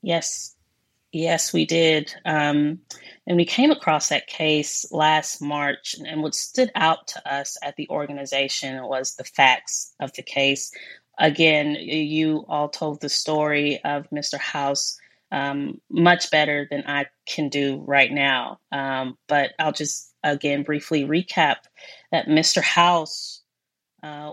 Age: 30-49